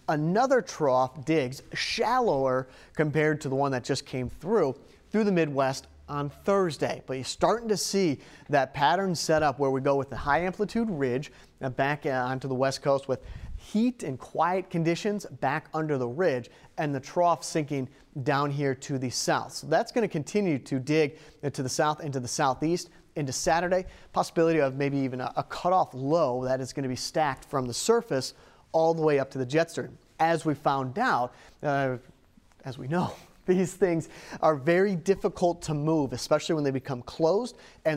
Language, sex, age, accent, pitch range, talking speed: English, male, 30-49, American, 135-165 Hz, 185 wpm